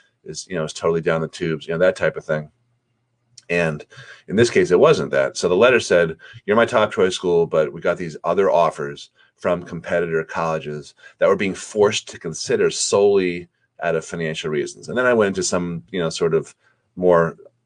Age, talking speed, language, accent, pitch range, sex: 30-49, 205 wpm, English, American, 80-120 Hz, male